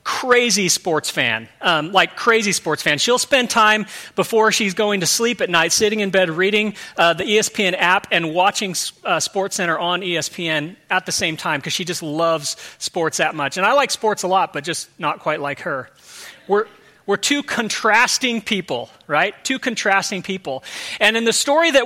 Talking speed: 190 wpm